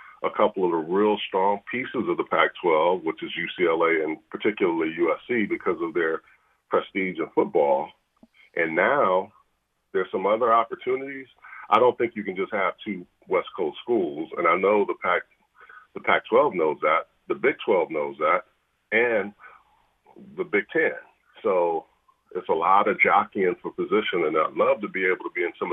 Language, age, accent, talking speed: English, 40-59, American, 175 wpm